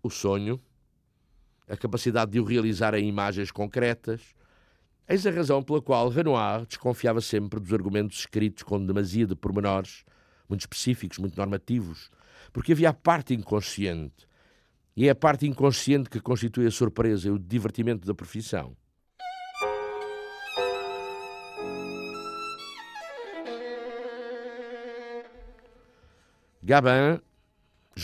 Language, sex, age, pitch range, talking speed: Portuguese, male, 50-69, 105-145 Hz, 105 wpm